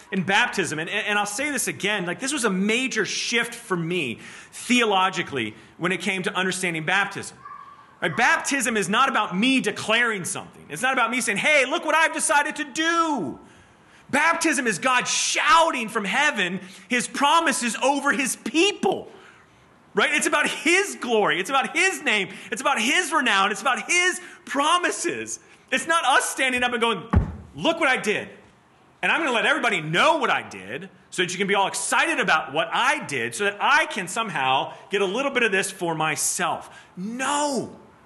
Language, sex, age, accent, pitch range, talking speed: English, male, 30-49, American, 195-280 Hz, 180 wpm